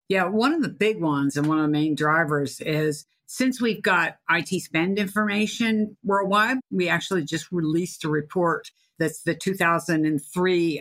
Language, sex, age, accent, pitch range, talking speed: English, female, 50-69, American, 155-185 Hz, 160 wpm